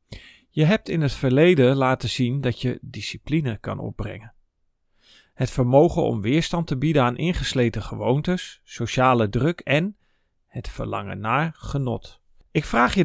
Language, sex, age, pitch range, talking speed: Dutch, male, 40-59, 110-140 Hz, 145 wpm